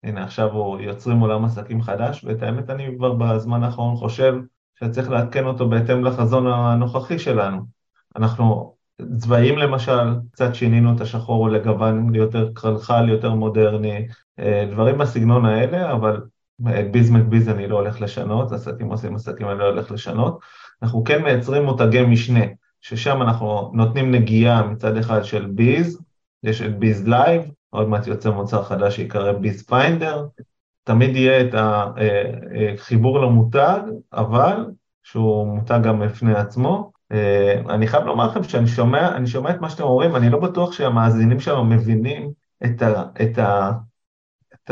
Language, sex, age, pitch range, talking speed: Hebrew, male, 30-49, 110-125 Hz, 140 wpm